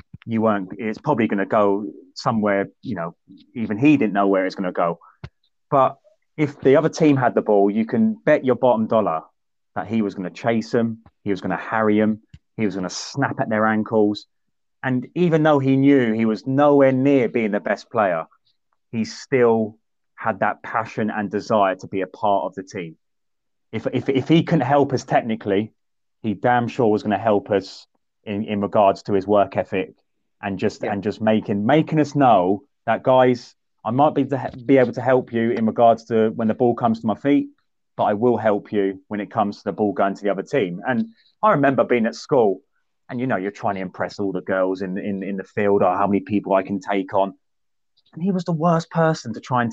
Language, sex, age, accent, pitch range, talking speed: English, male, 30-49, British, 105-140 Hz, 225 wpm